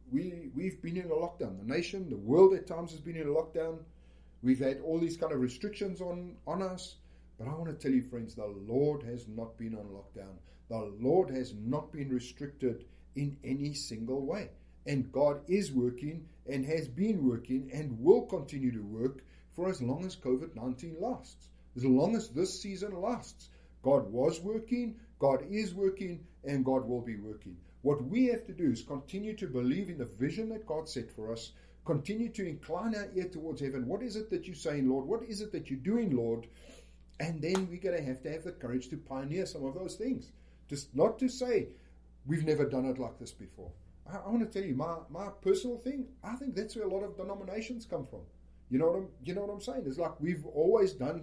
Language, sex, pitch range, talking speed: English, male, 125-195 Hz, 215 wpm